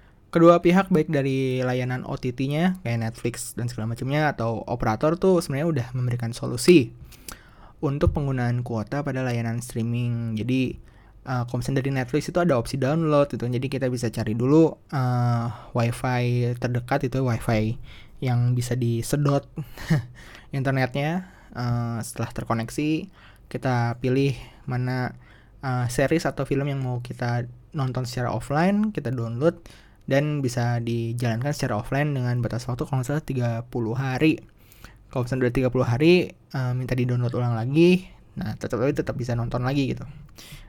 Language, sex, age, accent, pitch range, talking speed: Indonesian, male, 20-39, native, 120-140 Hz, 135 wpm